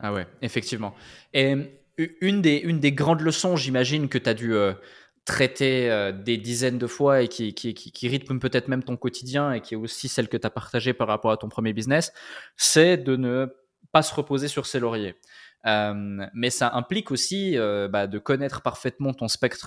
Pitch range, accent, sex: 110-140 Hz, French, male